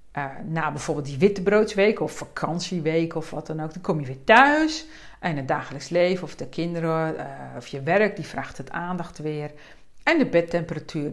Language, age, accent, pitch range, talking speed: Dutch, 50-69, Dutch, 155-230 Hz, 190 wpm